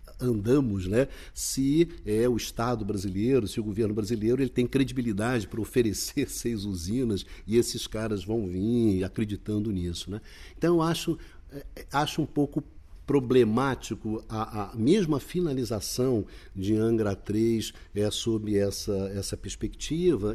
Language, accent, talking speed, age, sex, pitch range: Portuguese, Brazilian, 135 wpm, 60-79, male, 100-130 Hz